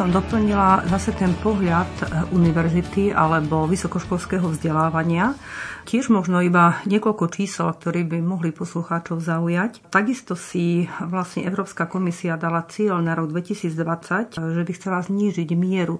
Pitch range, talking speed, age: 165-195 Hz, 130 wpm, 40-59